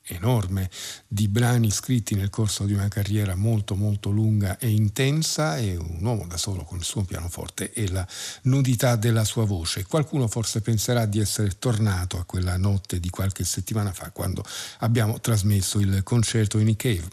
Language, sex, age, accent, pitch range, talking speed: Italian, male, 50-69, native, 95-120 Hz, 170 wpm